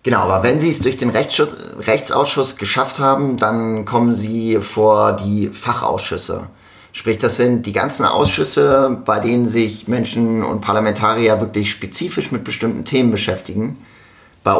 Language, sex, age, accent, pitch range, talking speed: German, male, 30-49, German, 105-120 Hz, 145 wpm